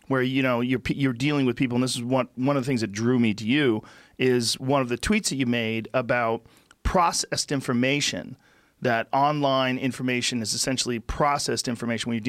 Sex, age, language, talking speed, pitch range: male, 40-59, English, 200 wpm, 120-140 Hz